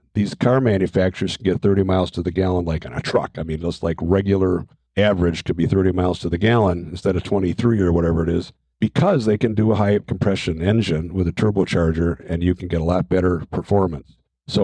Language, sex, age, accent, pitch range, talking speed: English, male, 50-69, American, 95-120 Hz, 220 wpm